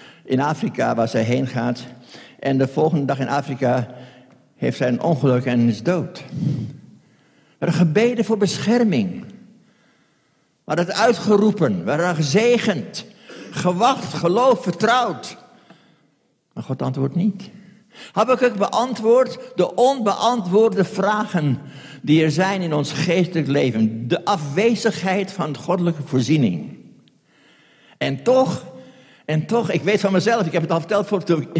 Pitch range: 150-205 Hz